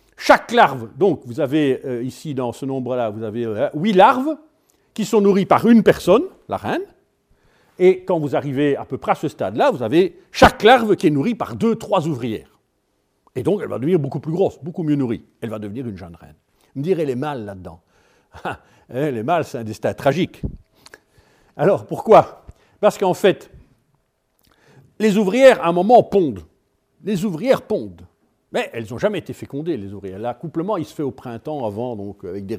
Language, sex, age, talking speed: French, male, 50-69, 195 wpm